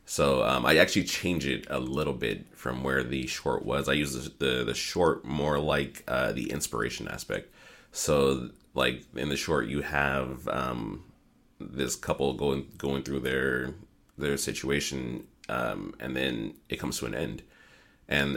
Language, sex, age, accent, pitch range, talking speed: English, male, 30-49, American, 65-75 Hz, 165 wpm